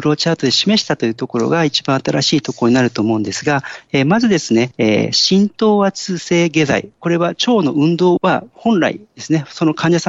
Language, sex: Japanese, male